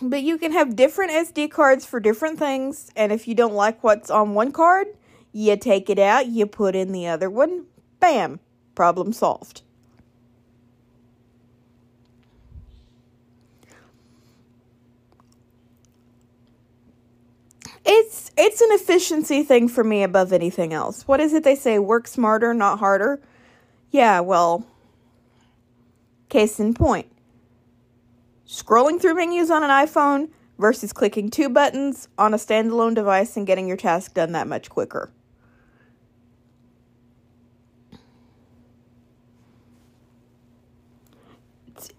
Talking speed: 115 wpm